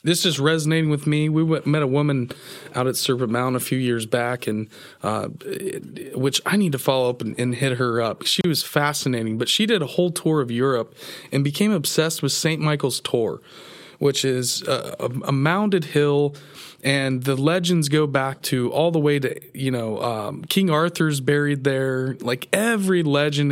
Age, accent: 30-49, American